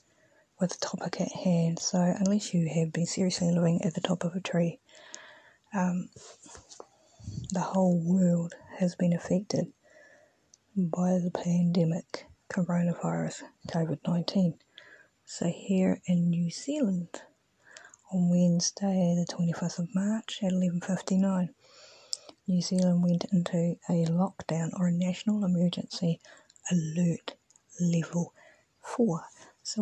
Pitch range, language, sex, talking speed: 170-195 Hz, English, female, 115 wpm